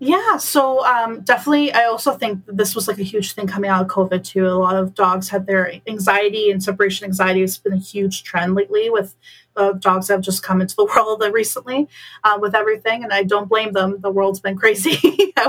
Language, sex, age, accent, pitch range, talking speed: English, female, 30-49, American, 190-225 Hz, 215 wpm